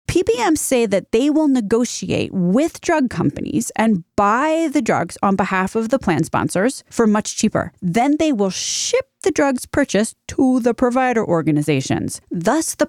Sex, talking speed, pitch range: female, 165 wpm, 180-250 Hz